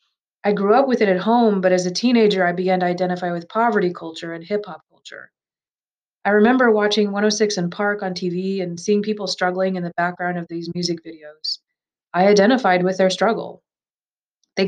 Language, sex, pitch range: English, female, 180-210 Hz